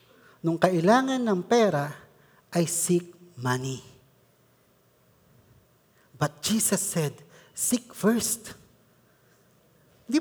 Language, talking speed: Filipino, 75 wpm